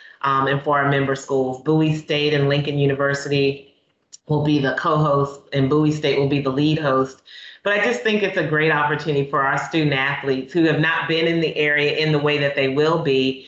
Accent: American